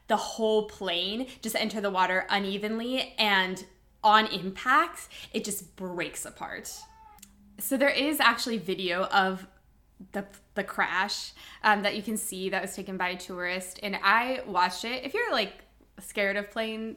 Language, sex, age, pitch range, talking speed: English, female, 10-29, 180-220 Hz, 160 wpm